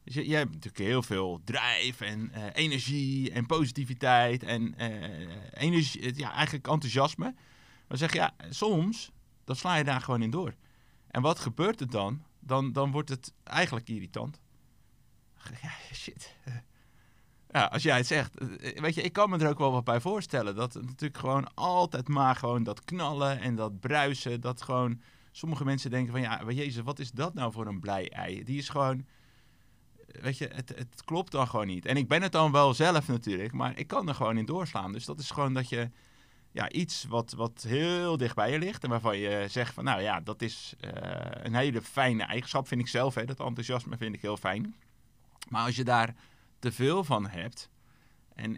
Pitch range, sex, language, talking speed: 115-140 Hz, male, Dutch, 200 wpm